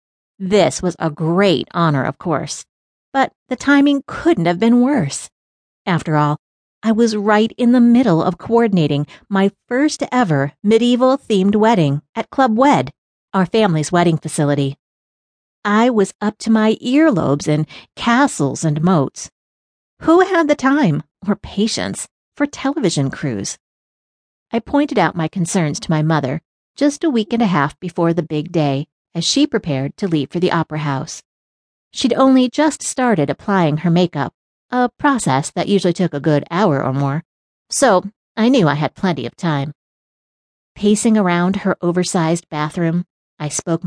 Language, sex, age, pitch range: English, female, 40-59, 155-245 Hz